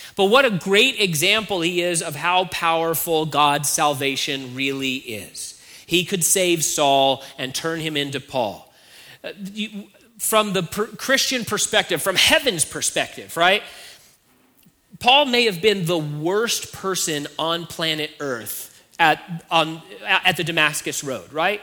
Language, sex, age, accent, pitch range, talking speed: English, male, 30-49, American, 160-210 Hz, 135 wpm